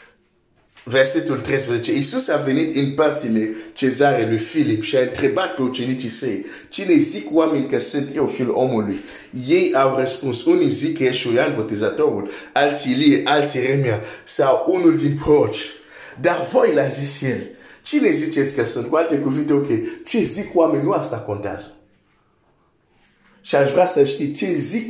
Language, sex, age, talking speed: Romanian, male, 50-69, 60 wpm